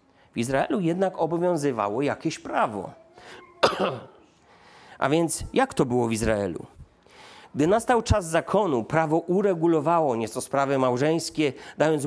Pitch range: 135-185 Hz